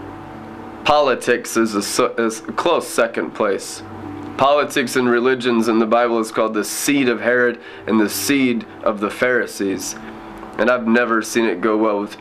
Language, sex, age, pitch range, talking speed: English, male, 20-39, 105-125 Hz, 160 wpm